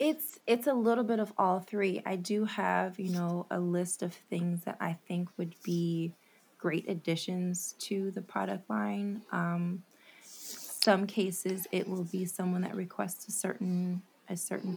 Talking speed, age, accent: 165 wpm, 20-39, American